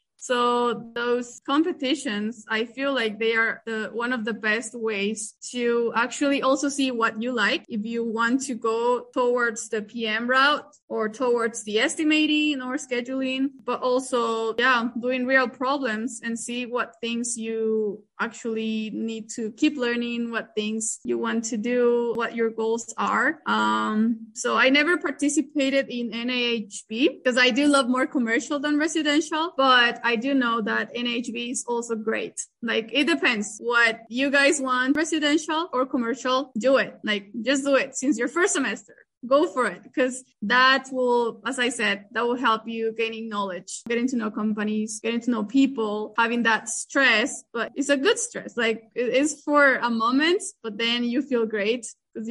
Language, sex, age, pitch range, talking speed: English, female, 20-39, 225-275 Hz, 170 wpm